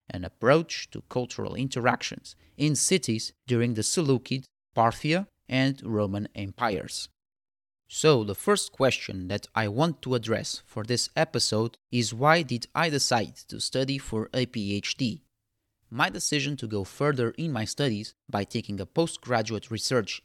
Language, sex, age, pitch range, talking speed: English, male, 30-49, 105-135 Hz, 145 wpm